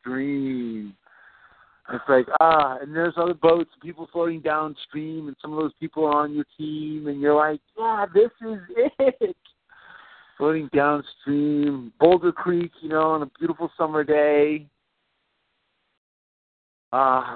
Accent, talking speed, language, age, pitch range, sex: American, 135 wpm, English, 50-69, 120-155 Hz, male